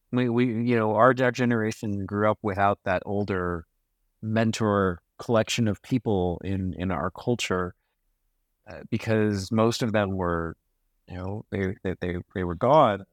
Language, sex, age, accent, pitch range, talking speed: English, male, 30-49, American, 100-120 Hz, 150 wpm